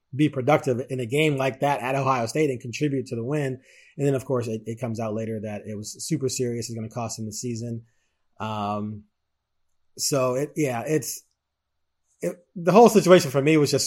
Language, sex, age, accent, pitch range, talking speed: English, male, 30-49, American, 125-155 Hz, 210 wpm